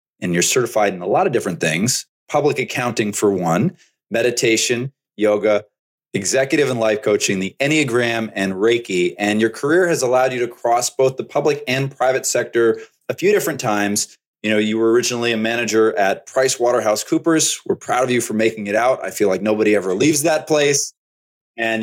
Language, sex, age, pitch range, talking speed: English, male, 30-49, 105-140 Hz, 190 wpm